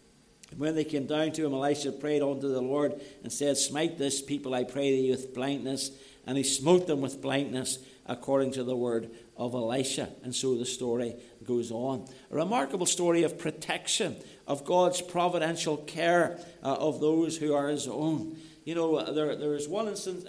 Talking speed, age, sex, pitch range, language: 185 wpm, 60-79, male, 130-155 Hz, English